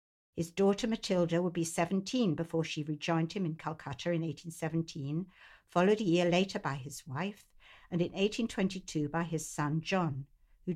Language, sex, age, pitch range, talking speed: English, female, 60-79, 150-195 Hz, 160 wpm